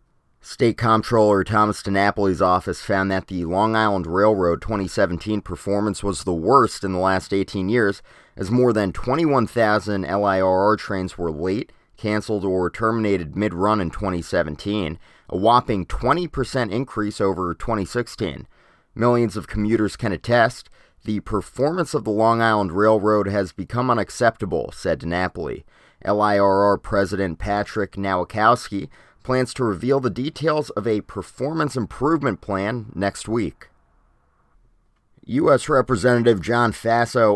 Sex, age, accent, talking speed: male, 30-49, American, 125 wpm